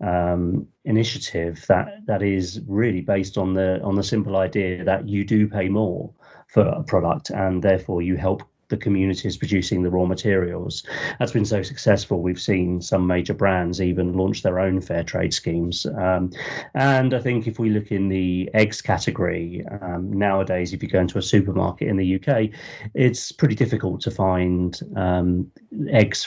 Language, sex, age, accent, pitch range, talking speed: English, male, 30-49, British, 90-105 Hz, 175 wpm